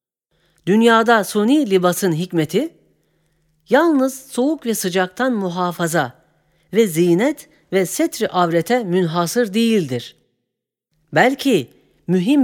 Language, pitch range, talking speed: Turkish, 155-215 Hz, 85 wpm